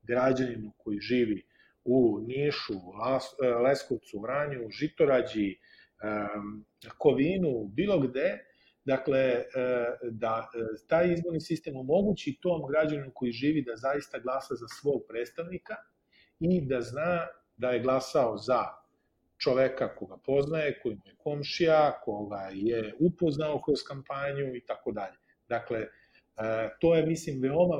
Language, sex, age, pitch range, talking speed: Croatian, male, 40-59, 120-155 Hz, 115 wpm